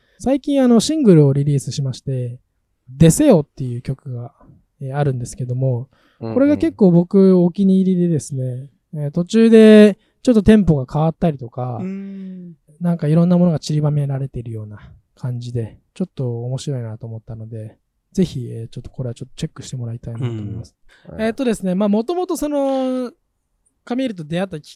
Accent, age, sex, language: native, 20-39, male, Japanese